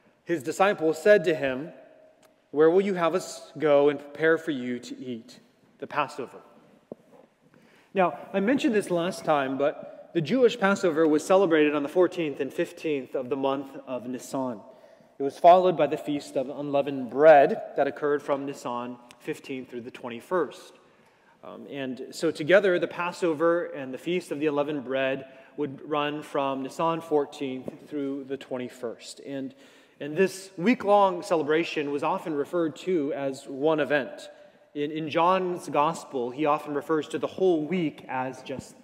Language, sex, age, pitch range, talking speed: English, male, 30-49, 140-180 Hz, 160 wpm